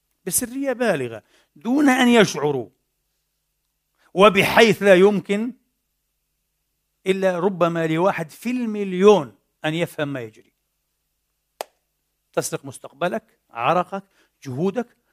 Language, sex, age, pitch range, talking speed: Arabic, male, 50-69, 155-220 Hz, 85 wpm